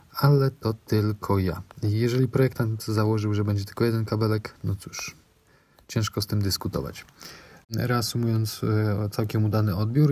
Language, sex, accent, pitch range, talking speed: Polish, male, native, 95-115 Hz, 130 wpm